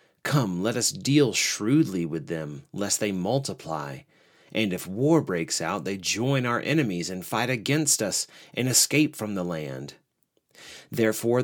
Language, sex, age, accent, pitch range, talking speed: English, male, 40-59, American, 105-150 Hz, 150 wpm